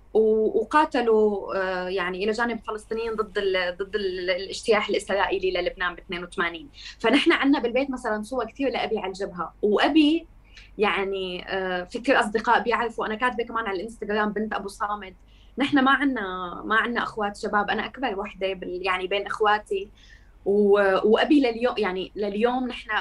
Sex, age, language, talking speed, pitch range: female, 20-39, Arabic, 135 wpm, 195-245 Hz